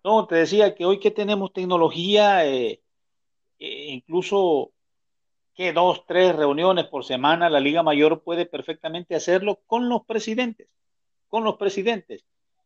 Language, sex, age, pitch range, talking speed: Spanish, male, 50-69, 145-190 Hz, 135 wpm